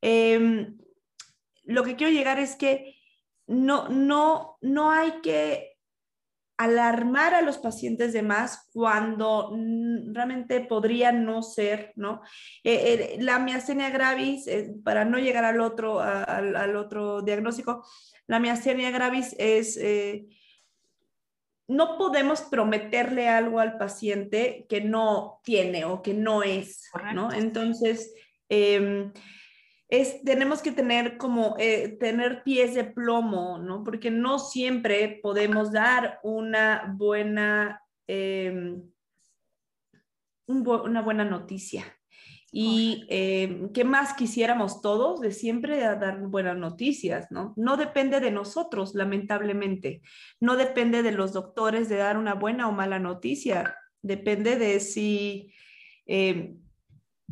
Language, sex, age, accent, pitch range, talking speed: Spanish, female, 20-39, Mexican, 205-250 Hz, 120 wpm